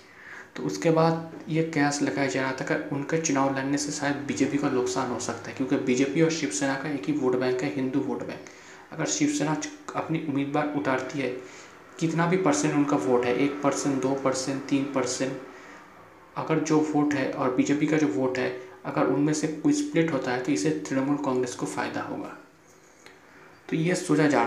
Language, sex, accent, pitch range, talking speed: Hindi, male, native, 130-150 Hz, 195 wpm